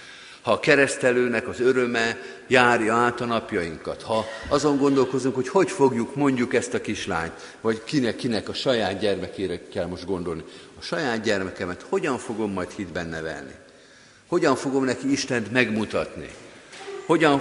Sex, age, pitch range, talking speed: male, 50-69, 105-135 Hz, 145 wpm